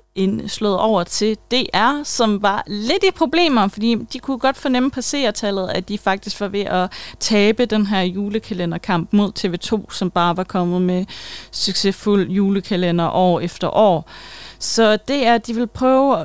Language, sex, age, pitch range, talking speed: Danish, female, 30-49, 195-240 Hz, 165 wpm